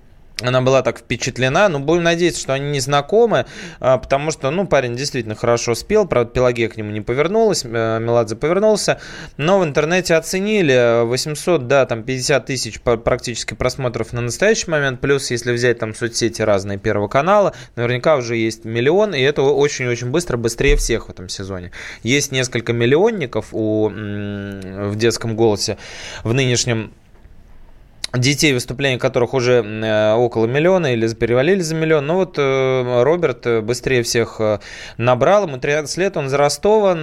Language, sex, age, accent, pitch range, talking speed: Russian, male, 20-39, native, 115-150 Hz, 150 wpm